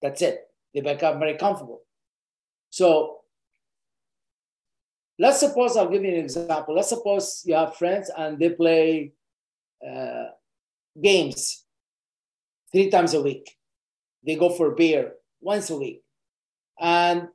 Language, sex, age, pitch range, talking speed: English, male, 50-69, 165-205 Hz, 125 wpm